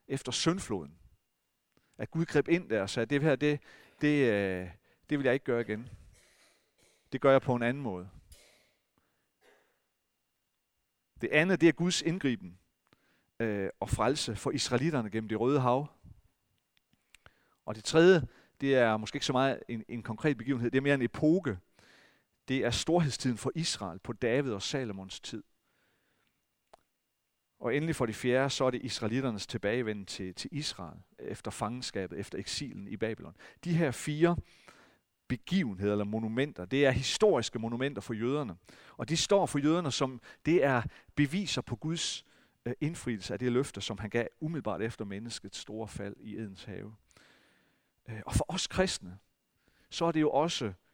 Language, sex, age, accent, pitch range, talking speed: Danish, male, 40-59, native, 105-145 Hz, 160 wpm